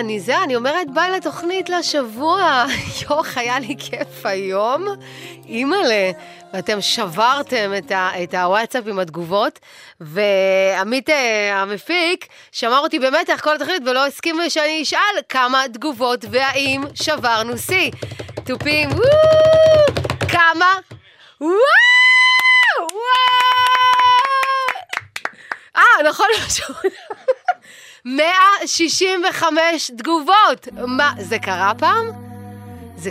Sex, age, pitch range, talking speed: female, 20-39, 205-320 Hz, 75 wpm